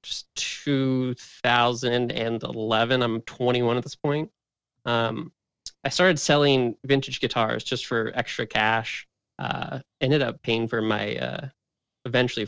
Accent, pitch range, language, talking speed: American, 110-135 Hz, English, 120 wpm